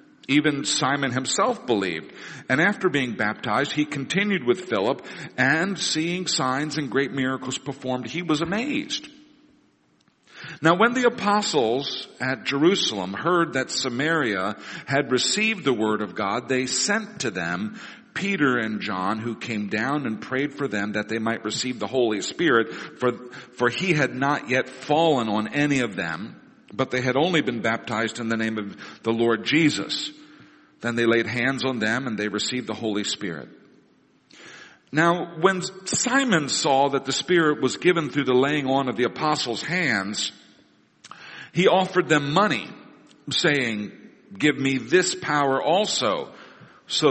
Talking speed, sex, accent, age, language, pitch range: 155 wpm, male, American, 50-69, English, 115-165 Hz